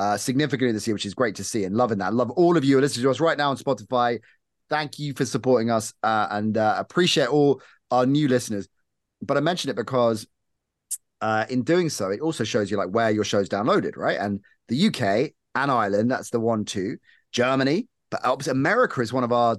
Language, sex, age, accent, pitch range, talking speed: English, male, 30-49, British, 105-140 Hz, 225 wpm